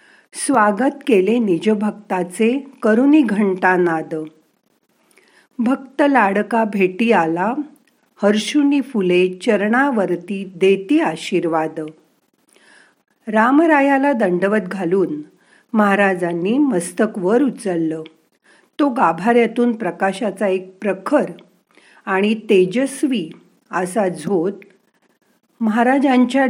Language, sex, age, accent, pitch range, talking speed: Marathi, female, 50-69, native, 180-245 Hz, 70 wpm